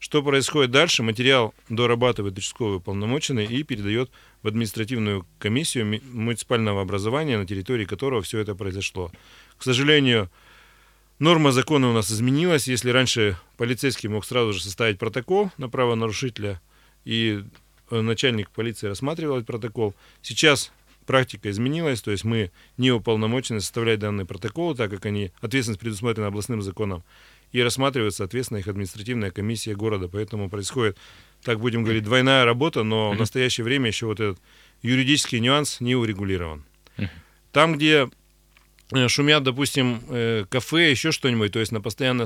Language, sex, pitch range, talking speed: Russian, male, 105-130 Hz, 140 wpm